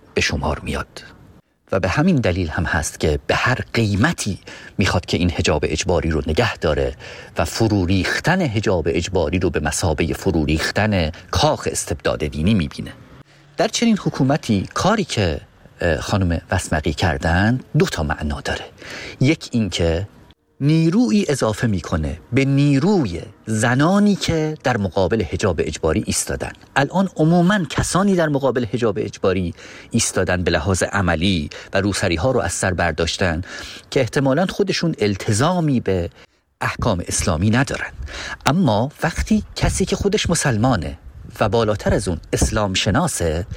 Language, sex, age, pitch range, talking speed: Persian, male, 40-59, 90-145 Hz, 135 wpm